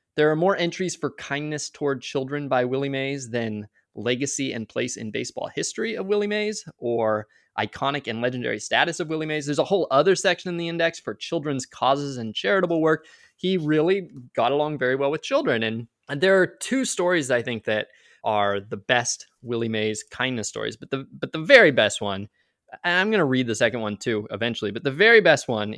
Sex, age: male, 20-39